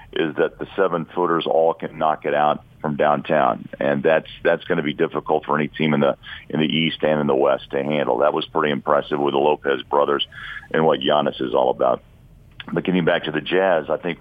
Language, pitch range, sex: English, 75-85 Hz, male